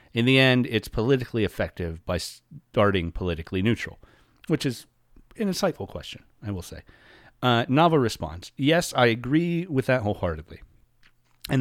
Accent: American